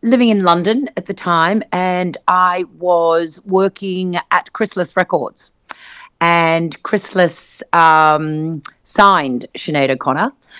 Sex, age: female, 40-59